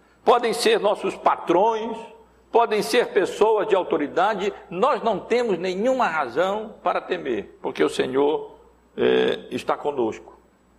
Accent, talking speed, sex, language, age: Brazilian, 115 wpm, male, Portuguese, 60-79